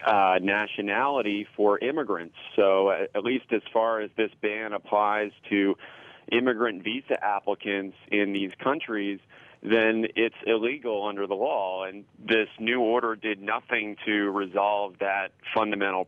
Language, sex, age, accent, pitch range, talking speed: English, male, 40-59, American, 100-115 Hz, 140 wpm